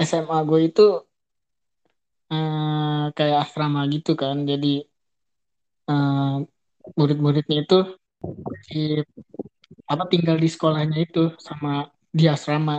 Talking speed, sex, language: 100 wpm, male, Indonesian